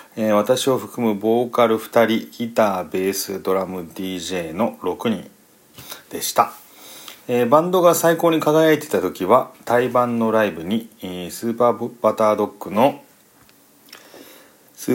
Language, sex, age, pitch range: Japanese, male, 40-59, 110-145 Hz